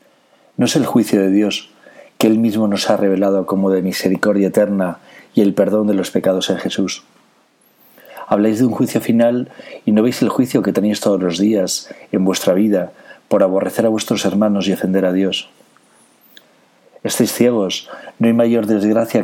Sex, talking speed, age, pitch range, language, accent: male, 180 wpm, 40-59, 95-110 Hz, Spanish, Spanish